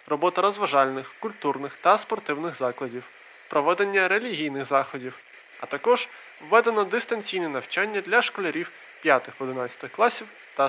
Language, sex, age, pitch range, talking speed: Ukrainian, male, 20-39, 140-210 Hz, 105 wpm